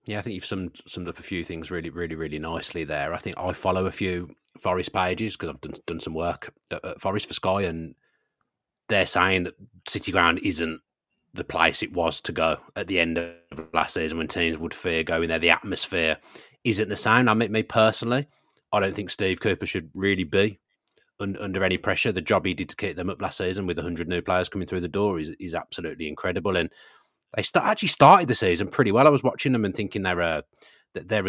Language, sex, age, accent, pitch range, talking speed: English, male, 30-49, British, 85-110 Hz, 230 wpm